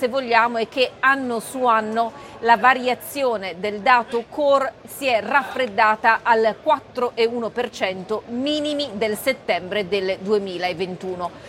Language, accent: Italian, native